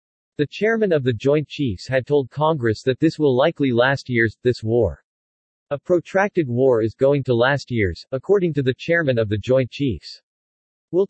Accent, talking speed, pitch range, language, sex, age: American, 185 wpm, 120-155 Hz, English, male, 40-59